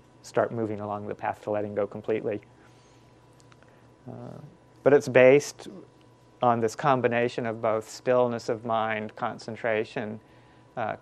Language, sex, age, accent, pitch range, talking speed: English, male, 40-59, American, 105-120 Hz, 125 wpm